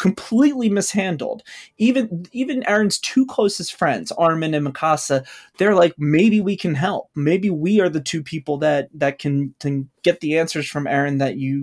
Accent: American